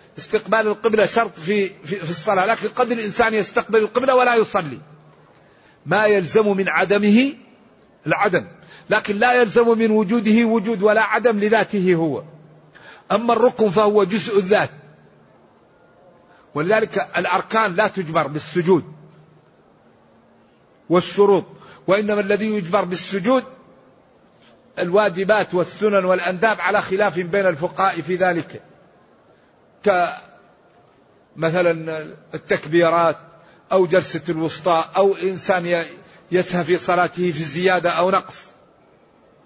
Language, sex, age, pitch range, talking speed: Arabic, male, 50-69, 165-210 Hz, 100 wpm